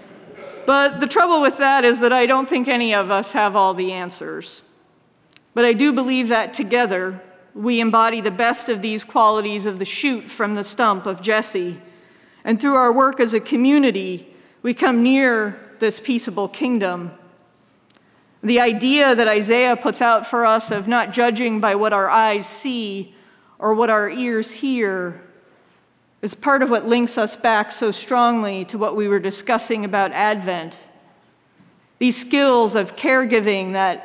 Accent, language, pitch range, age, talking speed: American, English, 200-245 Hz, 40-59, 165 wpm